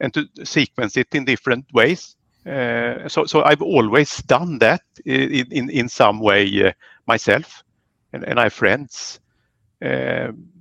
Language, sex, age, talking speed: English, male, 50-69, 155 wpm